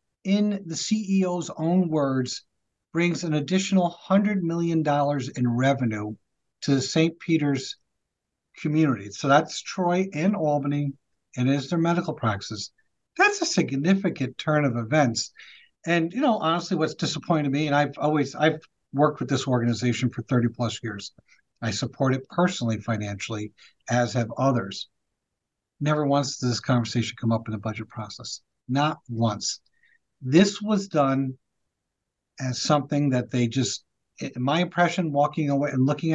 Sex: male